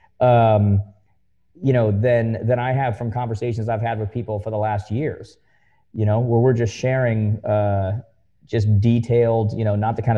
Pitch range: 105-125 Hz